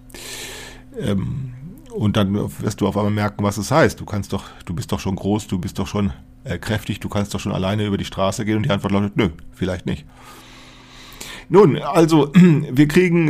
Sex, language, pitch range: male, German, 105-130 Hz